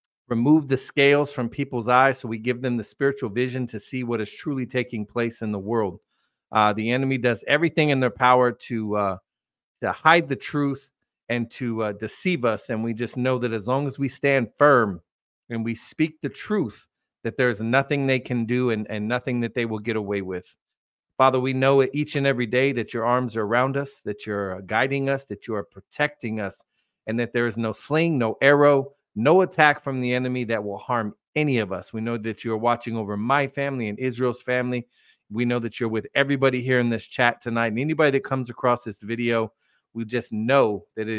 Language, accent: English, American